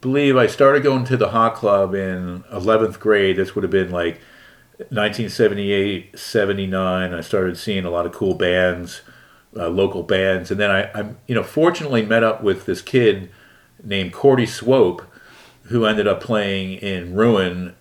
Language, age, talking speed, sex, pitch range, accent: English, 40-59, 170 wpm, male, 90-110 Hz, American